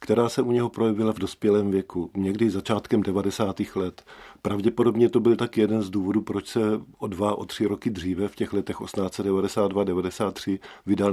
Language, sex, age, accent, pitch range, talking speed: Czech, male, 40-59, native, 95-110 Hz, 180 wpm